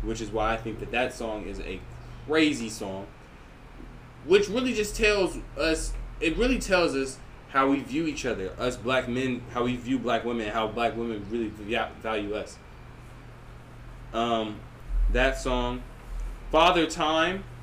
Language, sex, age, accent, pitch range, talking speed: English, male, 20-39, American, 105-135 Hz, 150 wpm